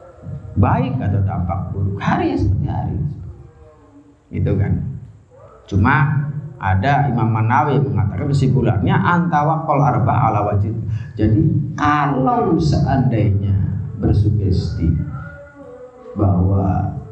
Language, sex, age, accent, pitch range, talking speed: Indonesian, male, 30-49, native, 95-125 Hz, 75 wpm